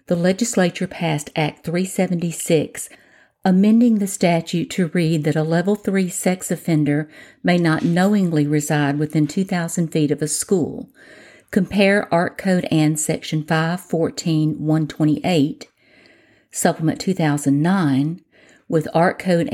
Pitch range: 155-190 Hz